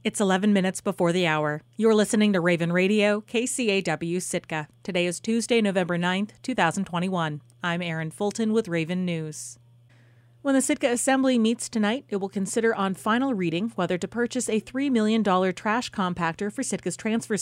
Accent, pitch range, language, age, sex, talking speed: American, 170-220 Hz, English, 30-49, female, 165 wpm